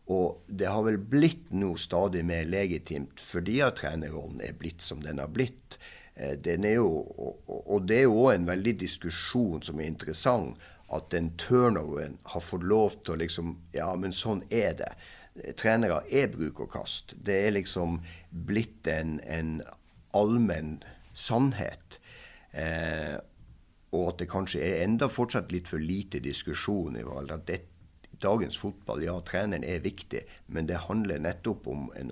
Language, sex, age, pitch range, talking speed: Swedish, male, 60-79, 80-105 Hz, 155 wpm